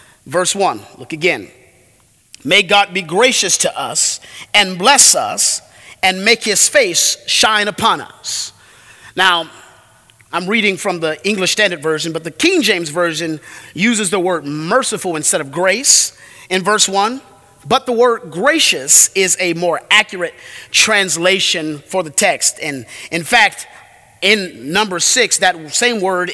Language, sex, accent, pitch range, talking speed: English, male, American, 170-225 Hz, 145 wpm